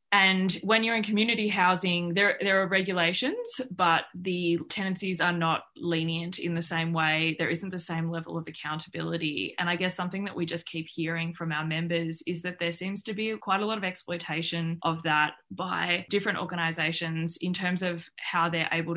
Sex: female